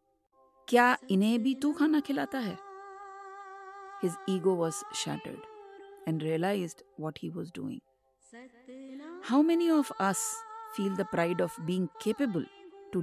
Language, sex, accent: English, female, Indian